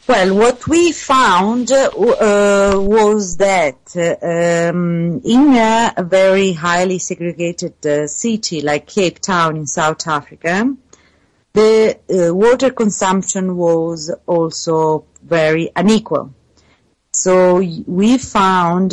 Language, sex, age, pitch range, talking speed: English, female, 40-59, 155-195 Hz, 110 wpm